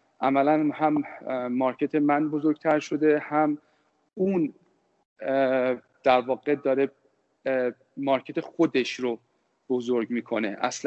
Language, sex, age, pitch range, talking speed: Persian, male, 40-59, 130-155 Hz, 95 wpm